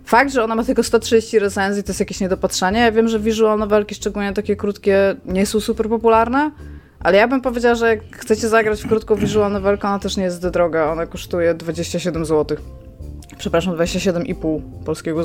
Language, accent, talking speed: Polish, native, 190 wpm